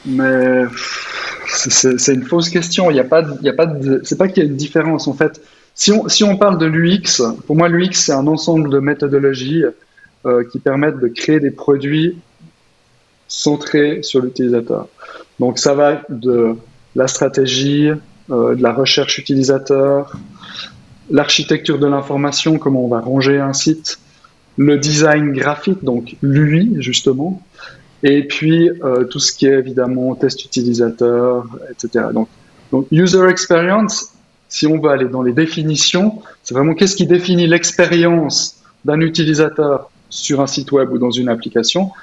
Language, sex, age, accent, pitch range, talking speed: French, male, 20-39, French, 130-165 Hz, 160 wpm